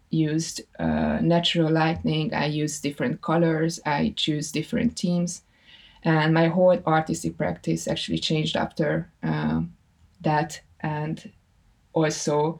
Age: 20-39